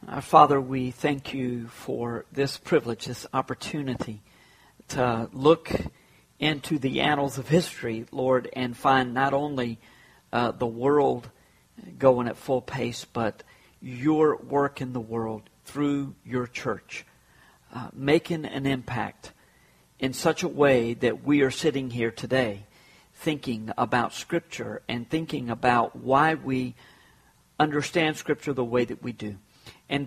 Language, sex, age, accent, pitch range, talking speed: English, male, 50-69, American, 120-150 Hz, 135 wpm